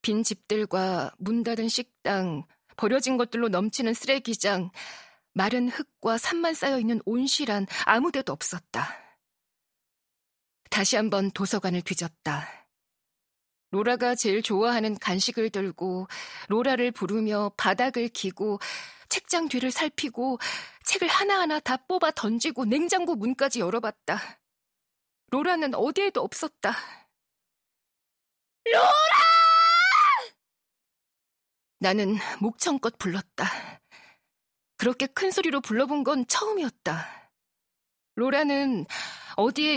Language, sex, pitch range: Korean, female, 210-295 Hz